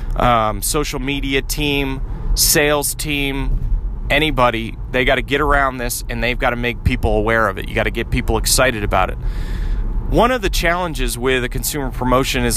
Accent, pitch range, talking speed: American, 110-130 Hz, 185 wpm